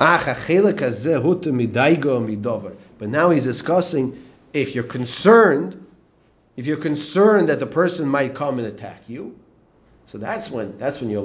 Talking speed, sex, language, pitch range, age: 130 wpm, male, English, 115-170 Hz, 40-59